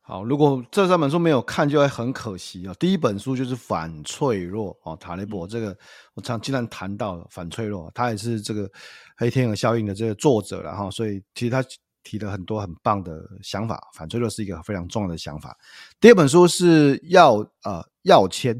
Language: Chinese